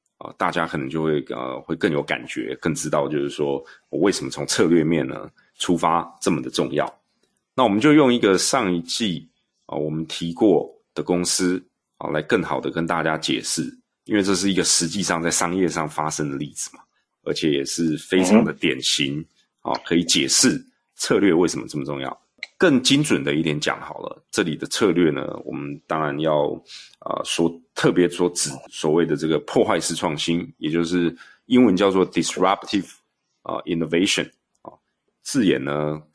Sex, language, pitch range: male, Chinese, 80-90 Hz